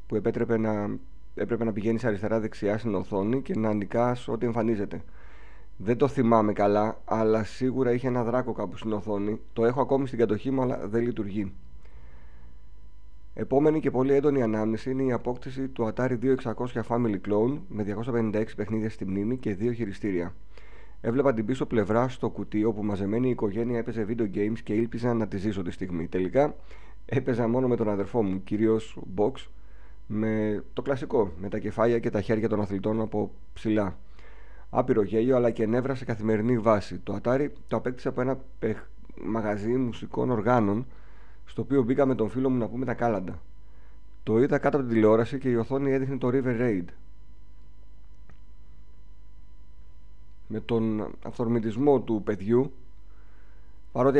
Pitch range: 100-125 Hz